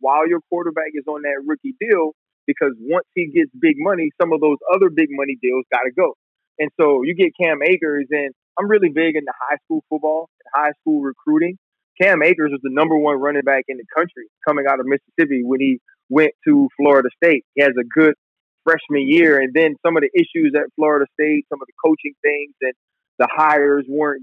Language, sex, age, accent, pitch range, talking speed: English, male, 30-49, American, 140-170 Hz, 215 wpm